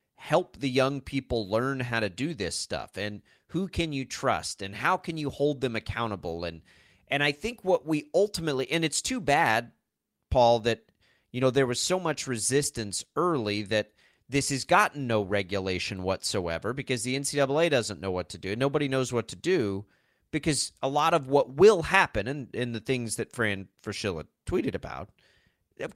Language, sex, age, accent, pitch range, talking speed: English, male, 30-49, American, 105-140 Hz, 185 wpm